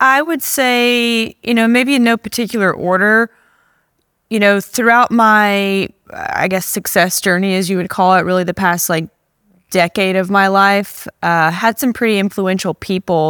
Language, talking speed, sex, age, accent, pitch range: English, 165 wpm, female, 20-39, American, 170-205 Hz